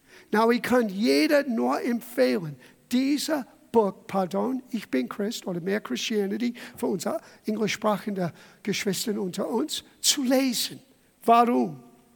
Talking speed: 120 wpm